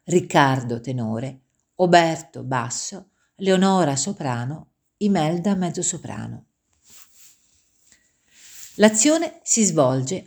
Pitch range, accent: 140-210 Hz, native